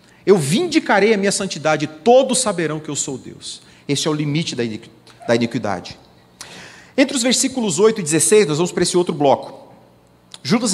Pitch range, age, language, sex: 130-210 Hz, 40-59, Portuguese, male